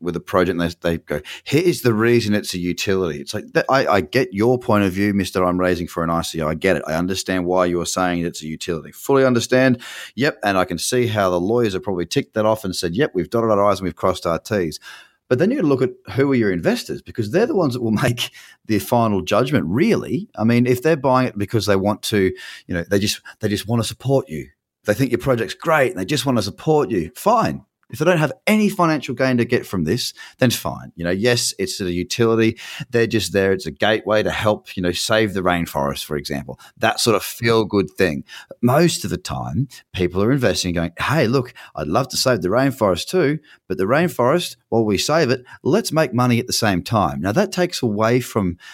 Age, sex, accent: 30-49, male, Australian